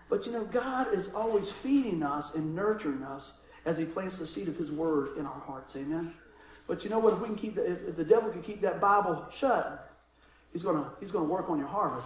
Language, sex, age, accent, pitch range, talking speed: English, male, 50-69, American, 150-235 Hz, 245 wpm